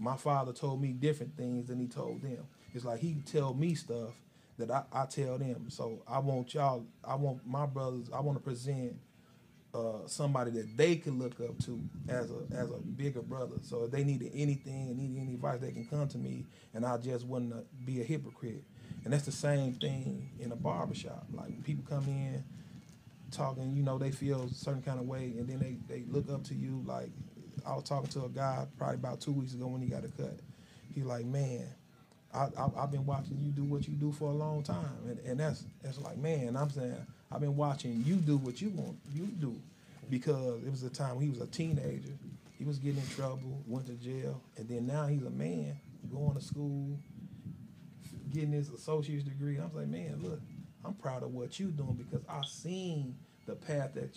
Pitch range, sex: 125-145 Hz, male